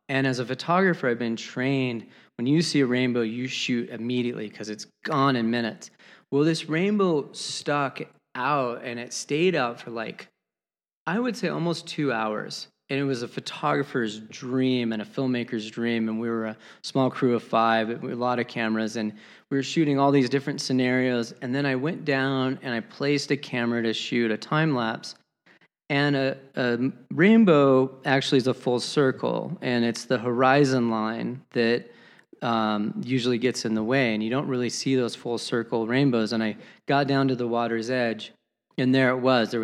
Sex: male